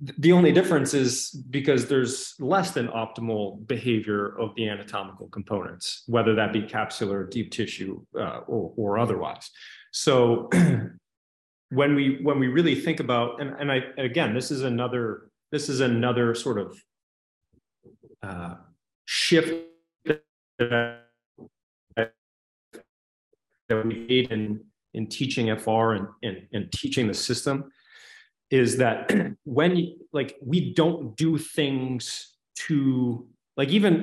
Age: 30-49